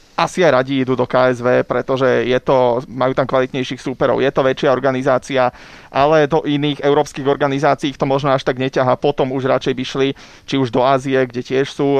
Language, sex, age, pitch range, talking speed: Slovak, male, 30-49, 130-140 Hz, 200 wpm